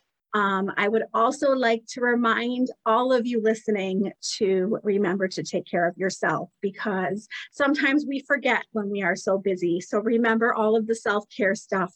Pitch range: 195-235 Hz